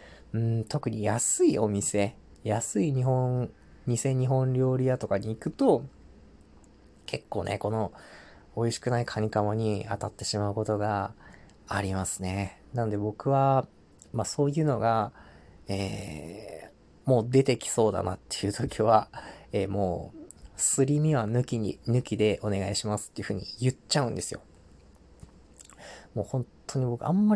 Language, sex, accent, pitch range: Japanese, male, native, 95-130 Hz